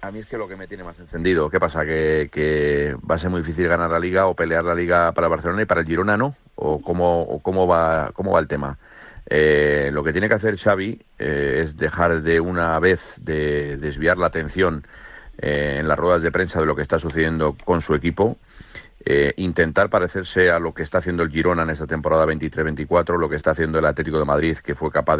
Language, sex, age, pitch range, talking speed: Spanish, male, 40-59, 75-85 Hz, 235 wpm